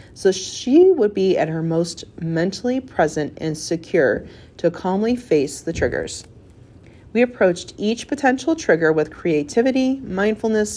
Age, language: 30-49, English